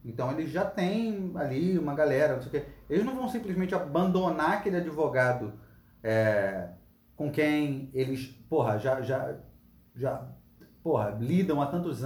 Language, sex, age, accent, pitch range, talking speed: Portuguese, male, 40-59, Brazilian, 120-190 Hz, 150 wpm